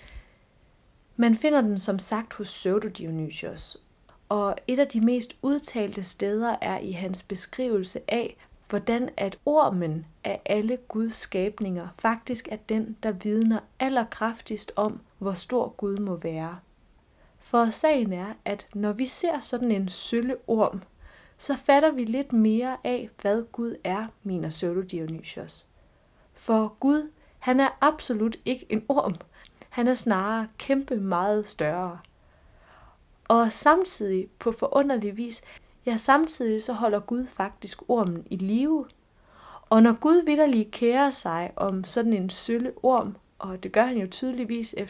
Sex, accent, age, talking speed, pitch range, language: female, Danish, 20-39, 140 wpm, 195-250 Hz, English